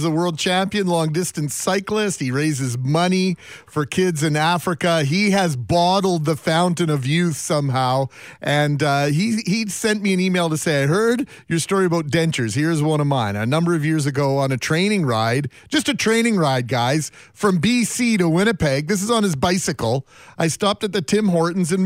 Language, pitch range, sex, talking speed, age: English, 140-185 Hz, male, 195 wpm, 40-59